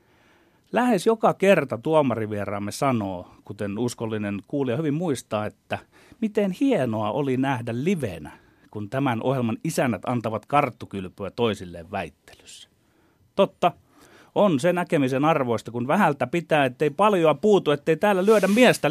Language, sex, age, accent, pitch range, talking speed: Finnish, male, 30-49, native, 115-170 Hz, 125 wpm